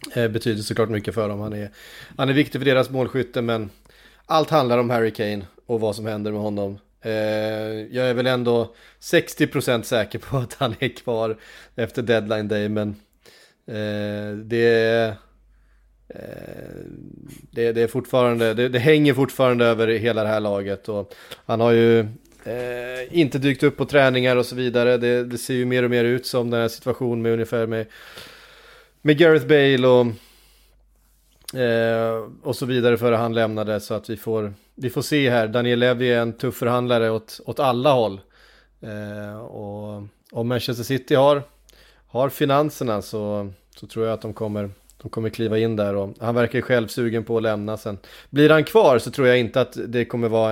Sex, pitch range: male, 110-125 Hz